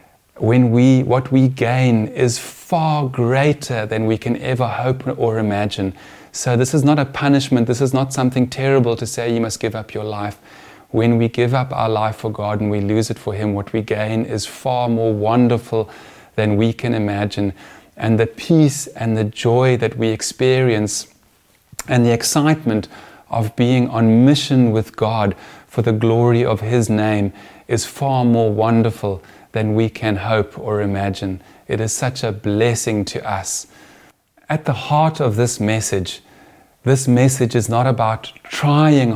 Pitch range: 105-125 Hz